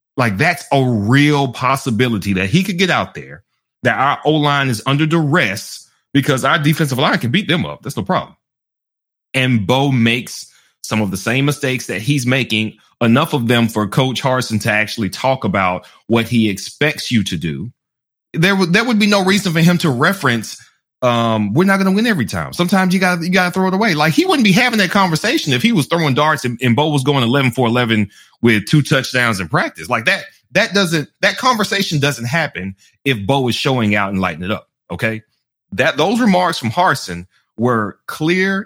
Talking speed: 205 wpm